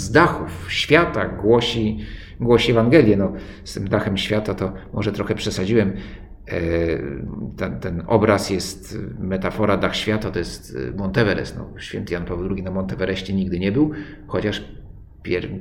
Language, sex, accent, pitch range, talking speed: Polish, male, native, 95-110 Hz, 145 wpm